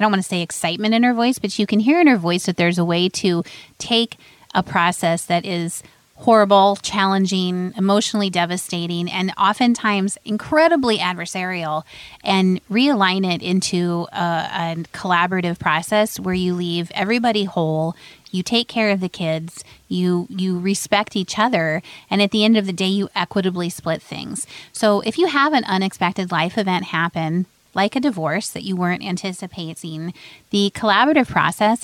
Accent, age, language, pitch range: American, 30-49, English, 175-210 Hz